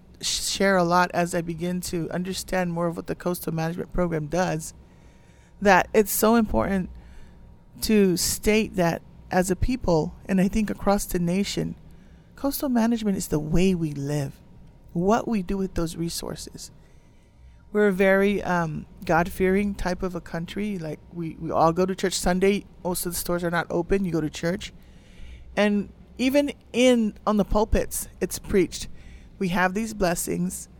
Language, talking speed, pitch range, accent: English, 165 wpm, 170-205 Hz, American